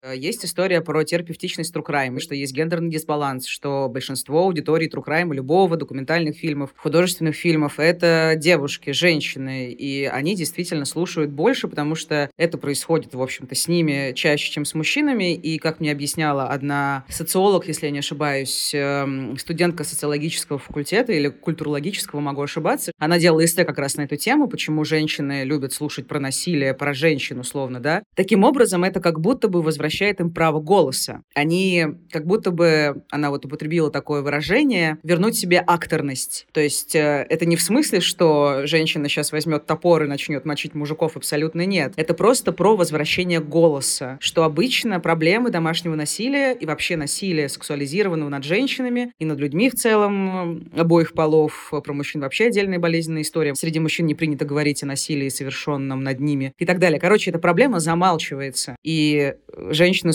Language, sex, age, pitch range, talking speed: Russian, female, 30-49, 145-175 Hz, 160 wpm